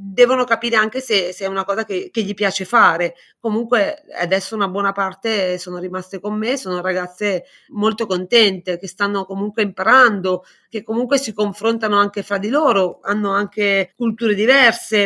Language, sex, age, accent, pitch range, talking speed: Italian, female, 30-49, native, 190-235 Hz, 165 wpm